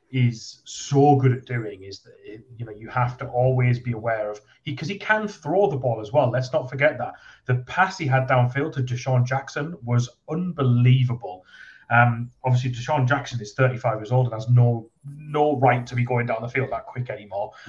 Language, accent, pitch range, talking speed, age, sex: English, British, 120-135 Hz, 205 wpm, 30-49, male